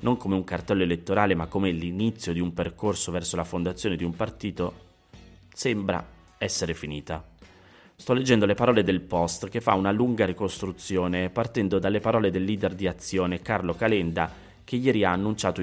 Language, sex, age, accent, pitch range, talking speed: Italian, male, 30-49, native, 90-110 Hz, 170 wpm